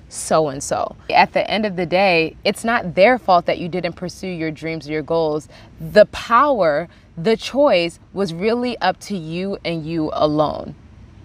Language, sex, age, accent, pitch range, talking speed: English, female, 20-39, American, 165-230 Hz, 170 wpm